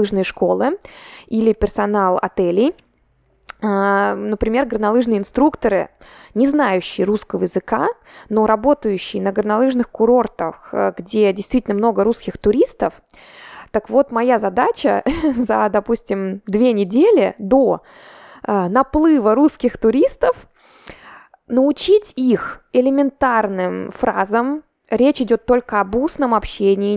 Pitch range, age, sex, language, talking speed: 210-265 Hz, 20-39, female, Russian, 95 wpm